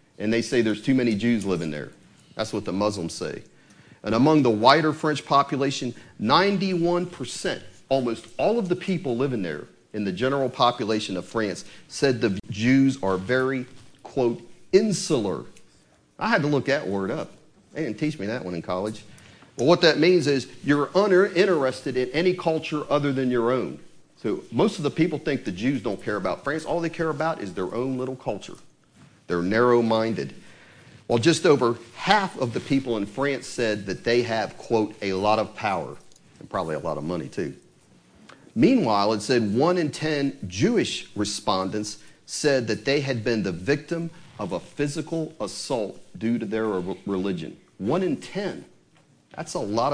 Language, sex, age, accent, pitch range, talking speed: English, male, 40-59, American, 110-165 Hz, 175 wpm